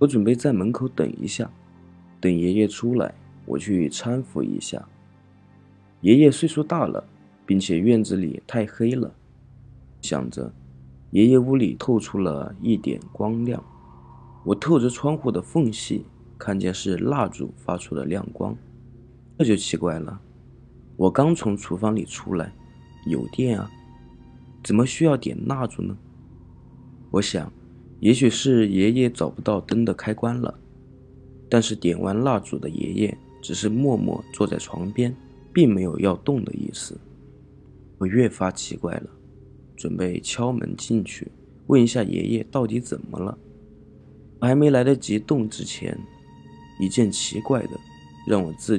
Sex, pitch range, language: male, 90-125 Hz, Chinese